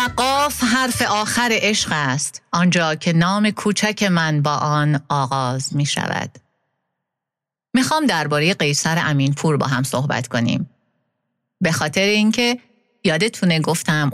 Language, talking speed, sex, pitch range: Persian, 125 wpm, female, 140-185 Hz